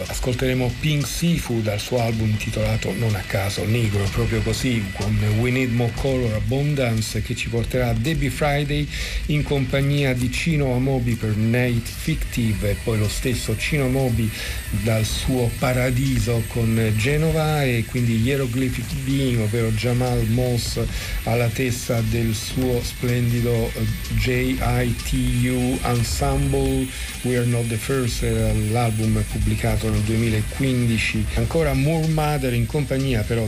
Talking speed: 130 wpm